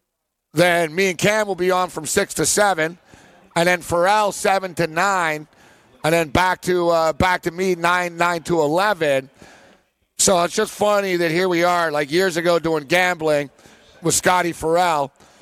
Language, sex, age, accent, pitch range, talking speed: English, male, 50-69, American, 155-190 Hz, 175 wpm